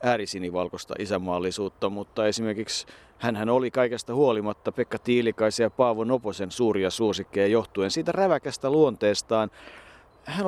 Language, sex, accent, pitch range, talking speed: Finnish, male, native, 100-125 Hz, 115 wpm